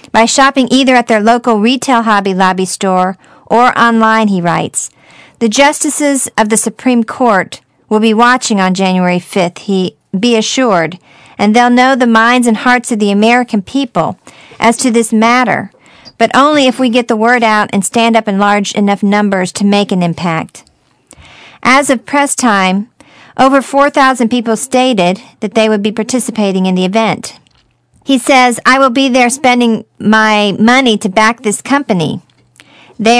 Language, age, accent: English, 50-69, American